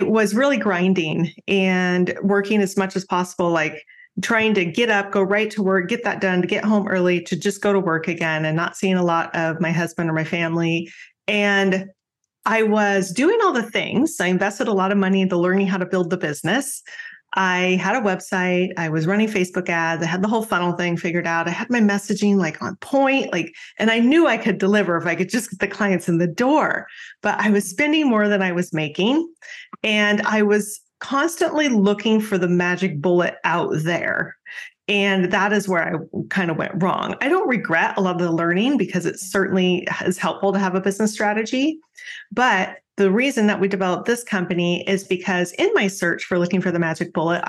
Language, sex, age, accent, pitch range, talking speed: English, female, 30-49, American, 175-210 Hz, 215 wpm